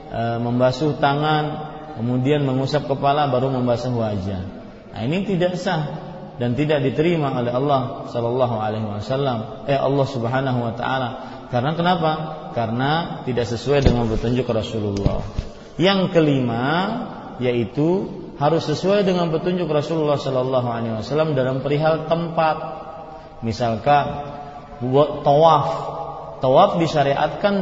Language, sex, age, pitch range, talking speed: Malay, male, 30-49, 125-165 Hz, 115 wpm